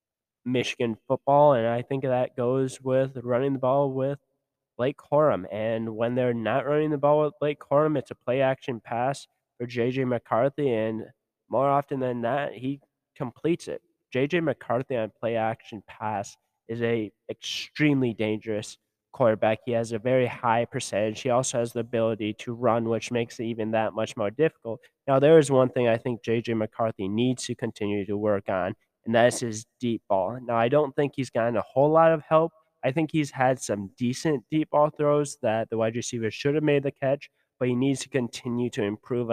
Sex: male